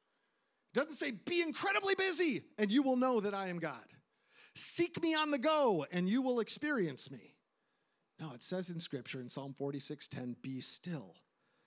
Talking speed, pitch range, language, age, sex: 180 wpm, 150-210 Hz, English, 50-69, male